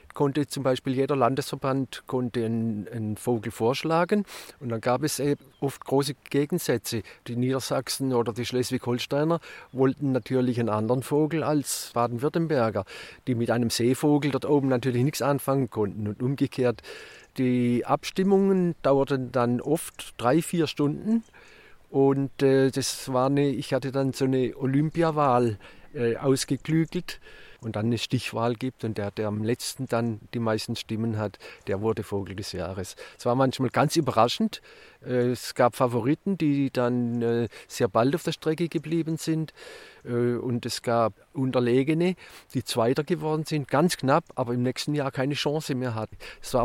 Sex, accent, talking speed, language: male, German, 155 wpm, German